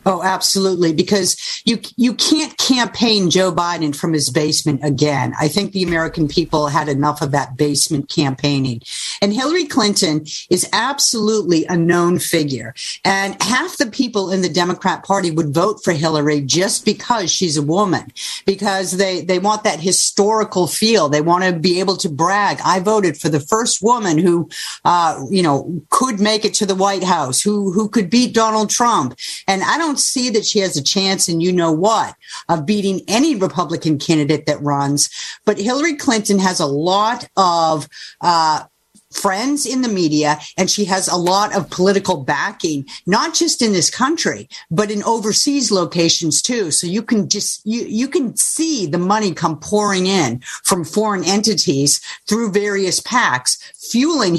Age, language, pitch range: 50-69, English, 160-215 Hz